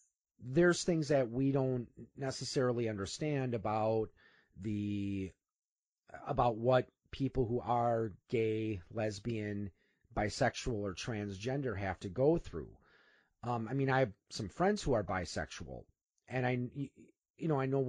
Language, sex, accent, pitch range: English, male, American, 105-135 Hz